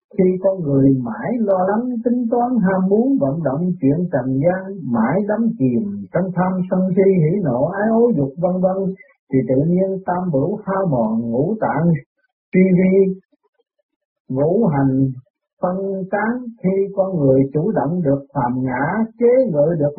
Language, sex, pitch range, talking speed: Vietnamese, male, 145-210 Hz, 165 wpm